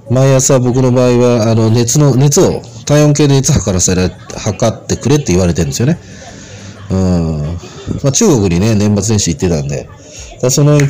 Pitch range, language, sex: 95-135 Hz, Japanese, male